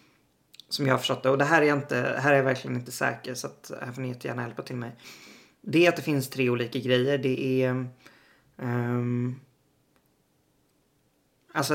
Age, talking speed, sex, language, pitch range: 20-39, 195 wpm, male, Swedish, 125-140 Hz